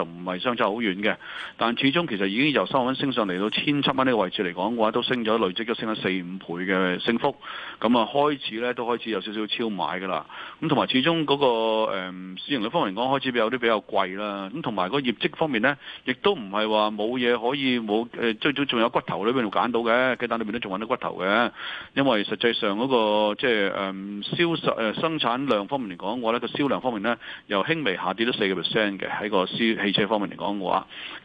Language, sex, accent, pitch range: Chinese, male, native, 100-125 Hz